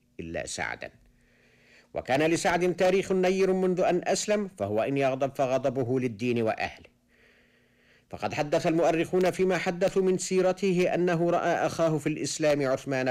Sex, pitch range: male, 105-155 Hz